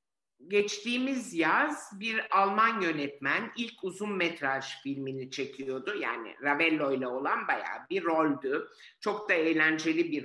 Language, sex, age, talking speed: Turkish, male, 50-69, 125 wpm